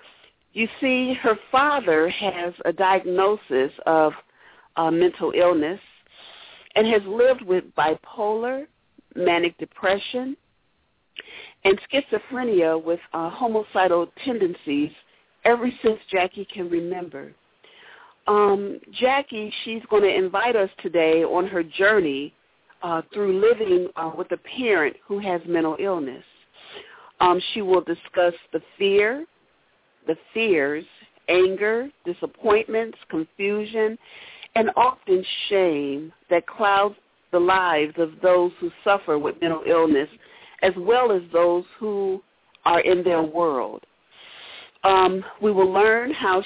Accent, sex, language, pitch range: American, female, English, 175-225 Hz